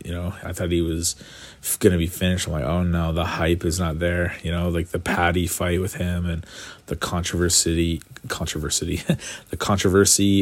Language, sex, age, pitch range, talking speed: English, male, 30-49, 85-100 Hz, 185 wpm